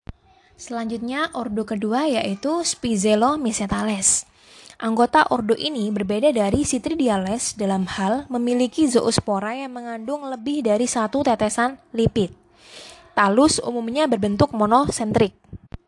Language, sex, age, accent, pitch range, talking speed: Indonesian, female, 20-39, native, 215-275 Hz, 100 wpm